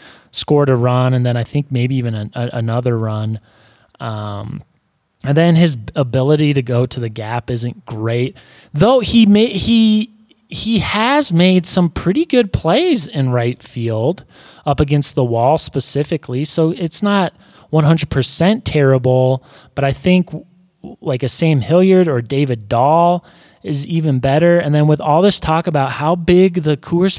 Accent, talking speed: American, 165 wpm